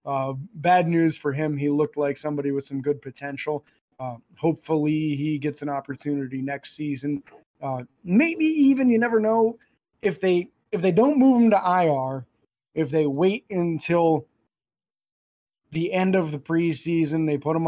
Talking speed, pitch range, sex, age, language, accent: 165 wpm, 145-180 Hz, male, 20-39, English, American